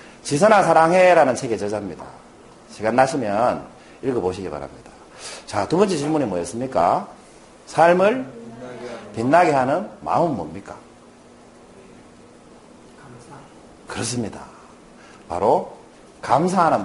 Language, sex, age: Korean, male, 40-59